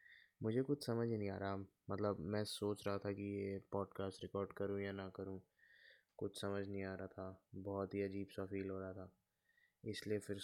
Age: 20-39